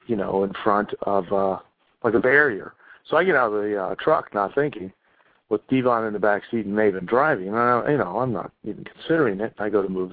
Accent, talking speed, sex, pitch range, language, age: American, 235 wpm, male, 105-135 Hz, English, 50-69